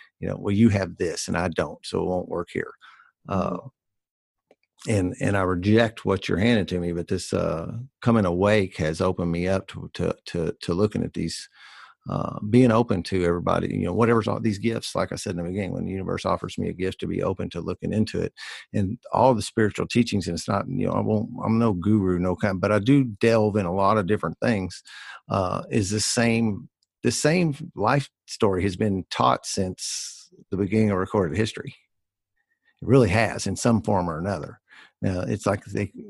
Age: 50-69